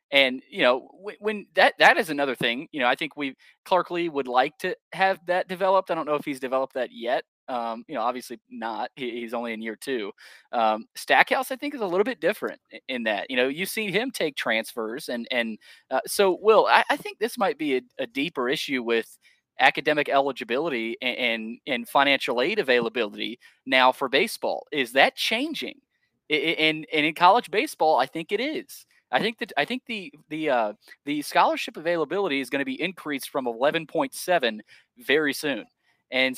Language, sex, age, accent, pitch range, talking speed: English, male, 20-39, American, 130-190 Hz, 205 wpm